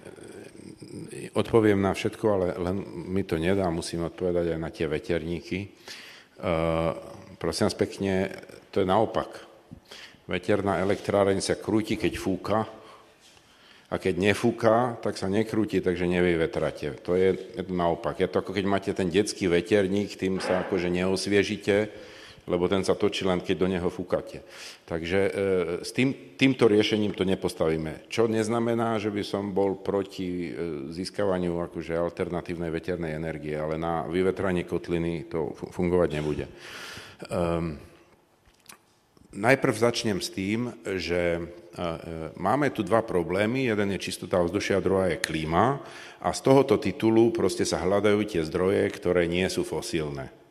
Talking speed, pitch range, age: 145 wpm, 85-105 Hz, 50-69